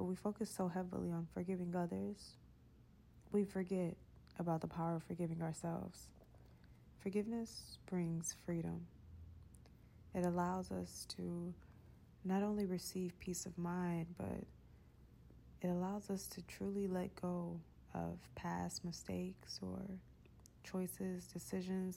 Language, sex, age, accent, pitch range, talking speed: English, female, 20-39, American, 160-185 Hz, 115 wpm